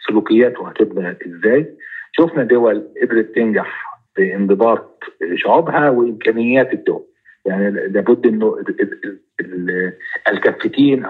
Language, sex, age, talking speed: Arabic, male, 50-69, 80 wpm